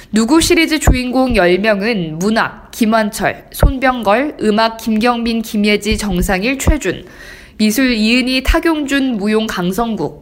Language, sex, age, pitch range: Korean, female, 20-39, 200-260 Hz